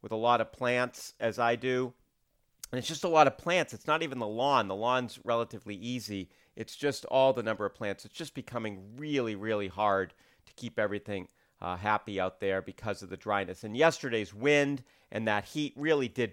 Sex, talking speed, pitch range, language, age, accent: male, 205 wpm, 105-140 Hz, English, 40-59, American